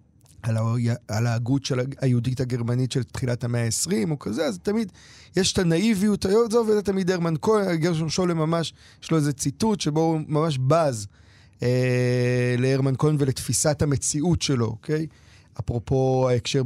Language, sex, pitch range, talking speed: Hebrew, male, 120-160 Hz, 150 wpm